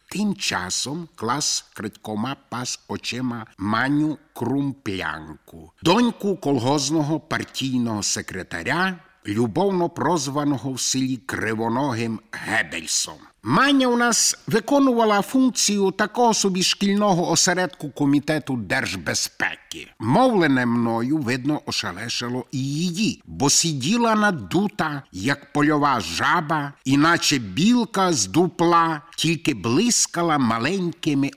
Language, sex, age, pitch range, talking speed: Ukrainian, male, 60-79, 125-195 Hz, 90 wpm